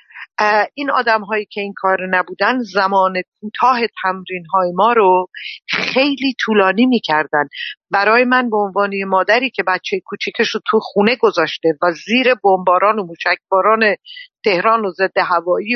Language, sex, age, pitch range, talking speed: Persian, female, 50-69, 185-250 Hz, 145 wpm